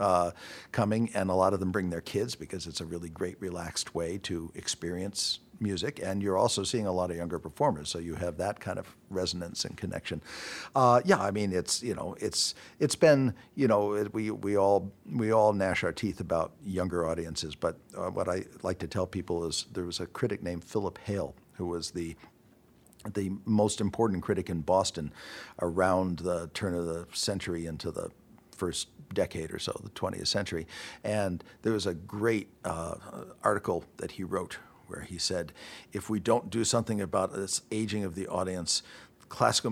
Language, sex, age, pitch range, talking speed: English, male, 50-69, 90-110 Hz, 190 wpm